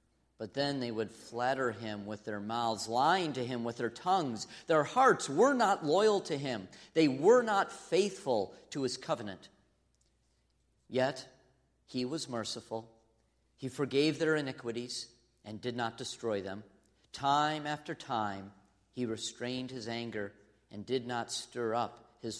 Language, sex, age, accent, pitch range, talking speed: English, male, 40-59, American, 115-150 Hz, 145 wpm